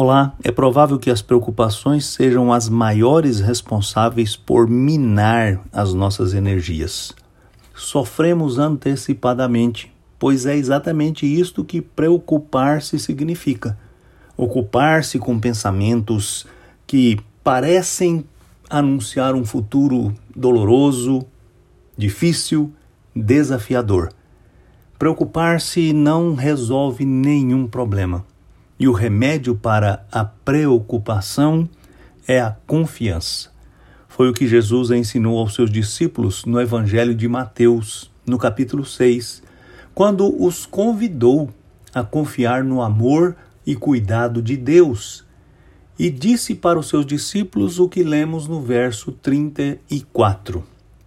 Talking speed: 100 wpm